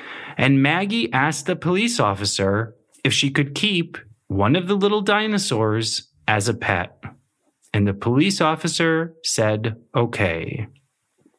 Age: 30-49